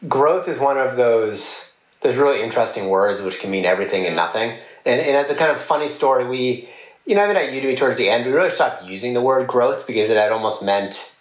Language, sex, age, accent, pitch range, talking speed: English, male, 30-49, American, 120-200 Hz, 235 wpm